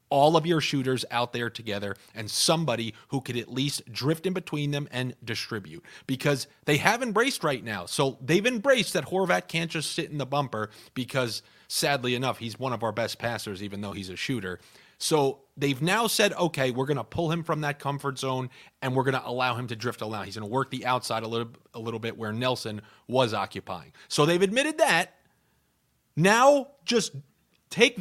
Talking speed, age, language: 205 wpm, 30-49, English